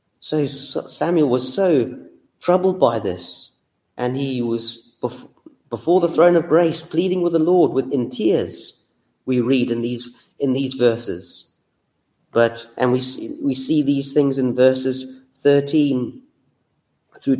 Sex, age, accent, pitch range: male, 40-59, British, 125-150 Hz